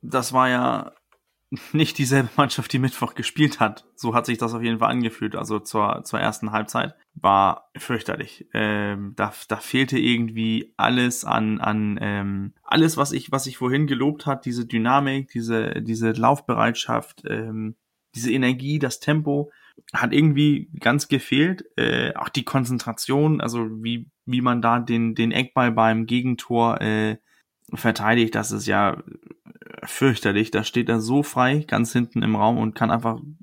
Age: 20-39